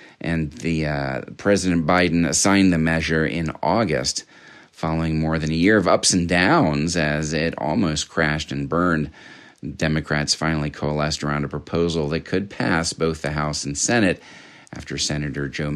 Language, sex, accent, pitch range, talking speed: English, male, American, 75-90 Hz, 160 wpm